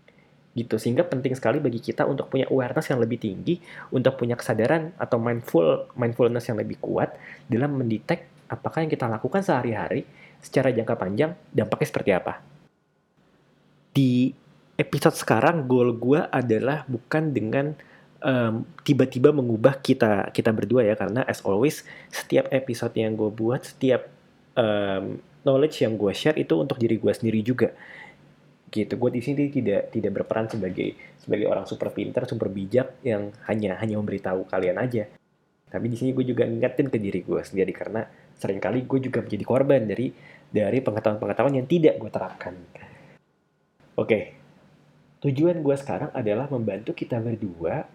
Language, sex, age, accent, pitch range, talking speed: Indonesian, male, 20-39, native, 110-140 Hz, 155 wpm